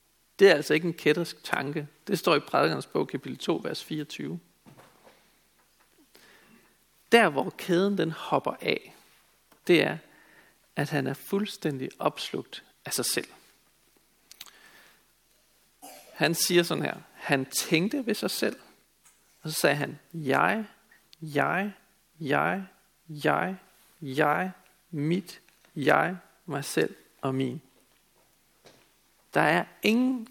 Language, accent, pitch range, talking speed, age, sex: Danish, native, 150-190 Hz, 120 wpm, 50-69, male